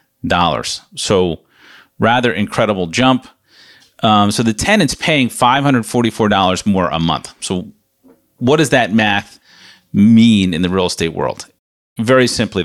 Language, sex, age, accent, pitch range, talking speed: English, male, 40-59, American, 95-120 Hz, 130 wpm